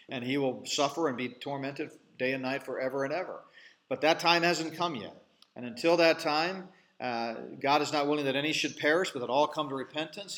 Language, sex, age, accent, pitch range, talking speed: English, male, 40-59, American, 130-165 Hz, 220 wpm